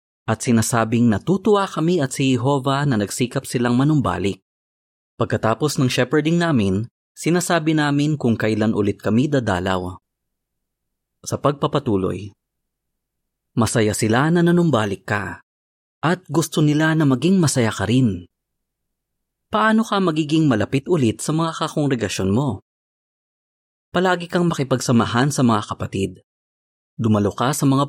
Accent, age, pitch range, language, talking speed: native, 30-49, 100-150 Hz, Filipino, 120 wpm